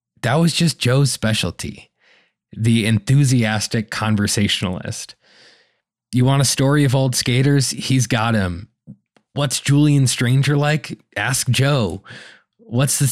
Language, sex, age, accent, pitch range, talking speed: English, male, 20-39, American, 105-130 Hz, 120 wpm